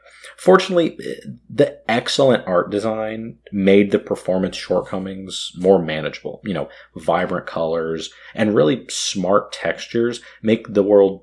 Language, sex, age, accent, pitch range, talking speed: English, male, 30-49, American, 85-115 Hz, 120 wpm